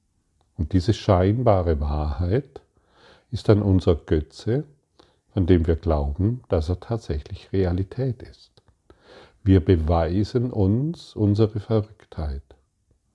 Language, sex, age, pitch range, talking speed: German, male, 40-59, 85-105 Hz, 100 wpm